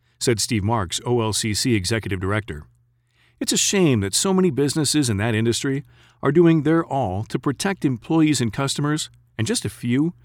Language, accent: English, American